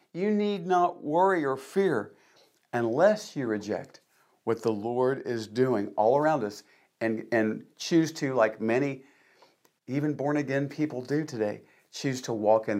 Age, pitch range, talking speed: 50-69, 115-155 Hz, 150 wpm